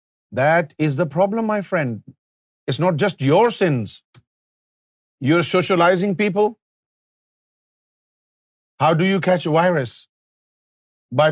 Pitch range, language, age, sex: 140-180 Hz, Urdu, 50-69, male